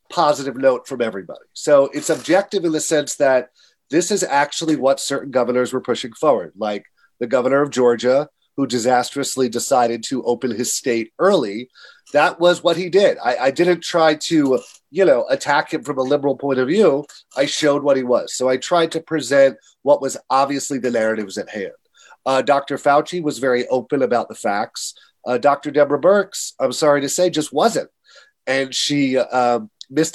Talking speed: 185 wpm